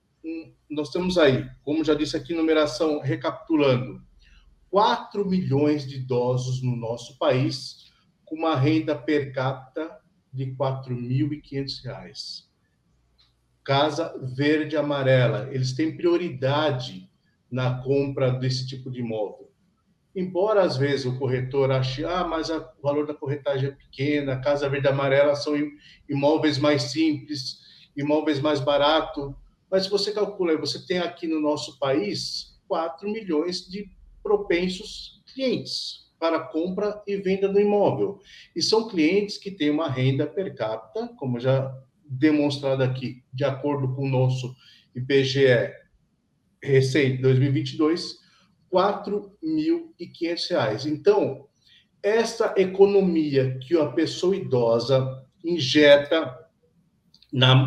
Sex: male